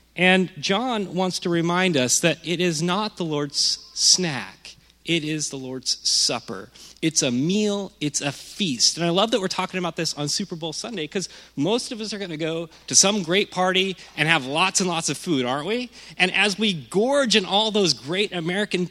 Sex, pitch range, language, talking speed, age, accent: male, 155-195 Hz, English, 210 wpm, 30-49, American